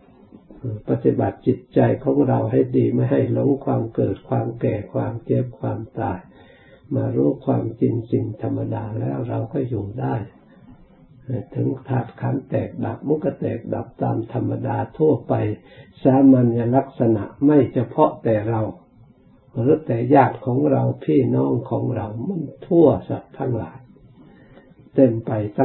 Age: 60-79